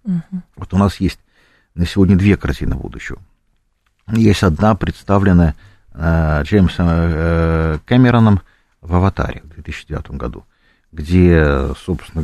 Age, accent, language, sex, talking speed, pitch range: 50-69, native, Russian, male, 115 wpm, 85-115 Hz